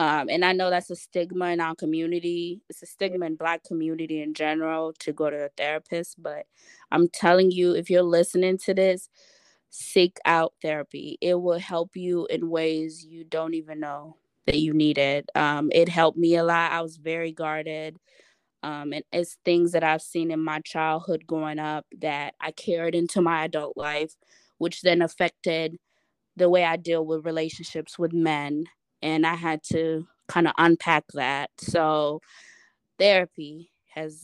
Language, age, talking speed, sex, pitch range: English, 20-39, 175 wpm, female, 155-170 Hz